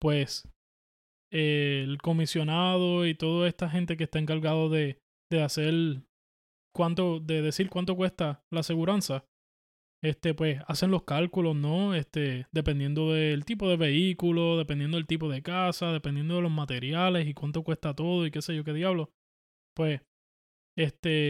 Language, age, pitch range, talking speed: Spanish, 20-39, 145-180 Hz, 150 wpm